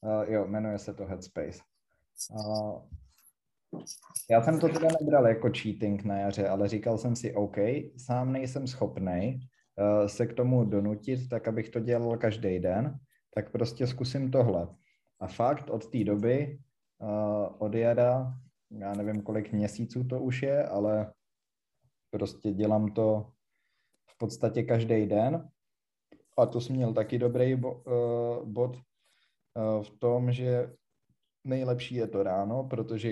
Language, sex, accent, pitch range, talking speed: Czech, male, native, 105-125 Hz, 145 wpm